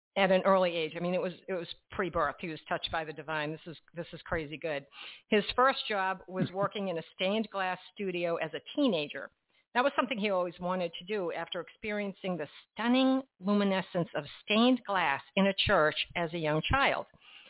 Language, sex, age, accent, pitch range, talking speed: English, female, 50-69, American, 160-195 Hz, 200 wpm